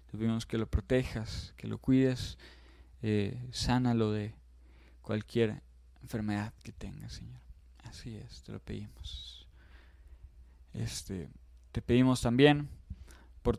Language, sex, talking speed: Spanish, male, 110 wpm